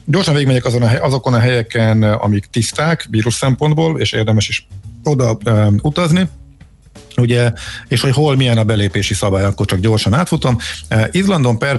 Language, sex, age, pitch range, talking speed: Hungarian, male, 50-69, 100-125 Hz, 155 wpm